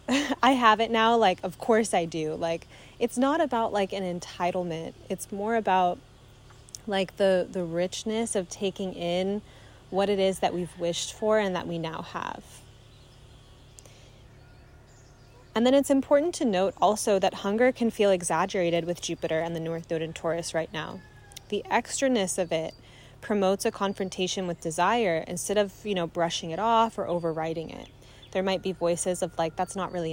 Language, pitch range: English, 165-205 Hz